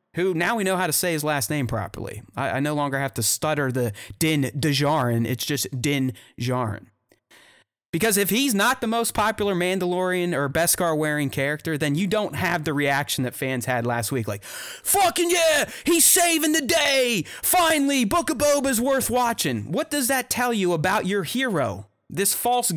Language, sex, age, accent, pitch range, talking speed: English, male, 30-49, American, 150-230 Hz, 180 wpm